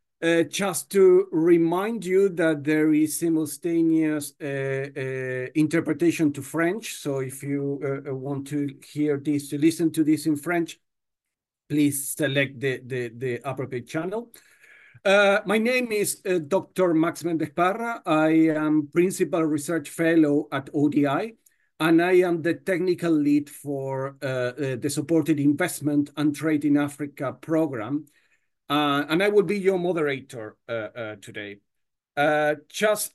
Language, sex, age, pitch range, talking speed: English, male, 50-69, 140-175 Hz, 140 wpm